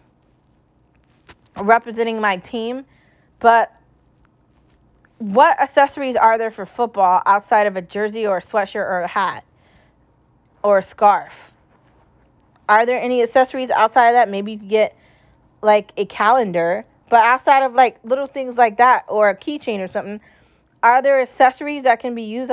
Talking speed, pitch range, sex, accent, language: 150 wpm, 205-260 Hz, female, American, English